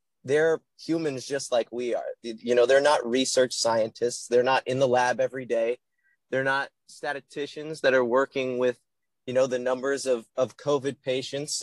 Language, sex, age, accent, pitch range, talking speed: English, male, 20-39, American, 125-150 Hz, 175 wpm